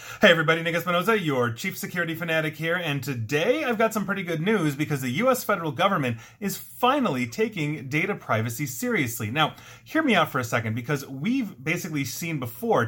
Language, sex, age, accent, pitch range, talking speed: English, male, 30-49, American, 125-175 Hz, 185 wpm